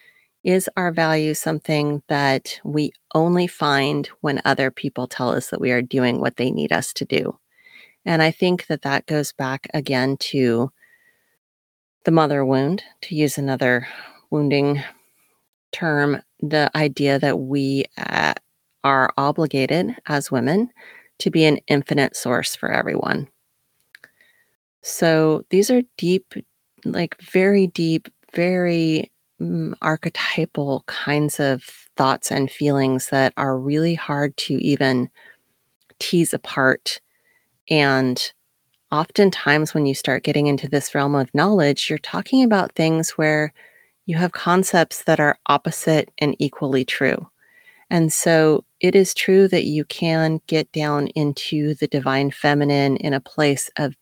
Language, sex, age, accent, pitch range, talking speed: English, female, 30-49, American, 140-170 Hz, 135 wpm